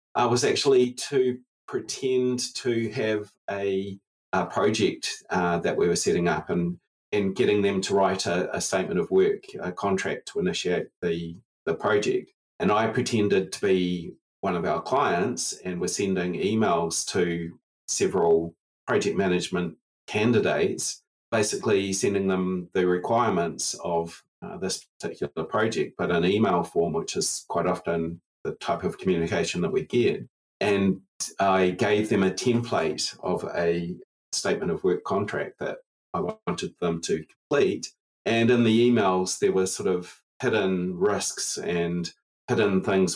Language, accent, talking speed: English, Australian, 150 wpm